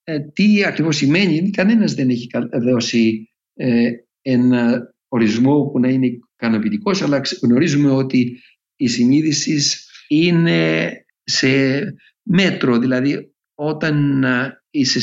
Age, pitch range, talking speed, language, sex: 60-79, 120-175 Hz, 95 wpm, Greek, male